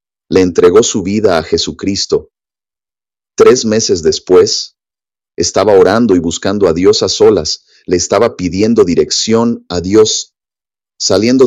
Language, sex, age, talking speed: English, male, 40-59, 125 wpm